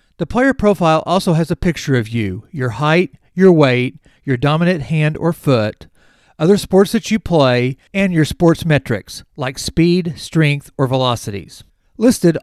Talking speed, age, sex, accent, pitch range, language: 160 wpm, 40-59, male, American, 135-180 Hz, English